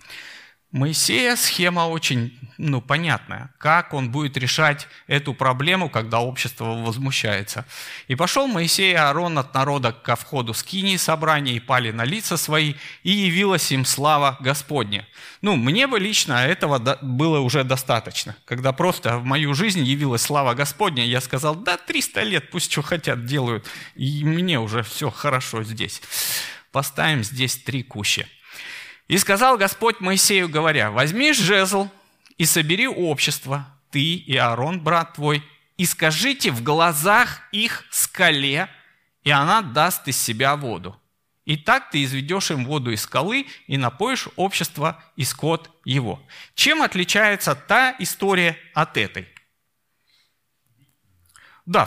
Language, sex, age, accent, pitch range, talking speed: Russian, male, 30-49, native, 130-180 Hz, 140 wpm